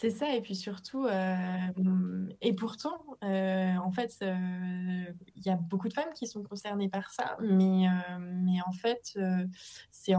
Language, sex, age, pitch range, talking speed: French, female, 20-39, 175-200 Hz, 175 wpm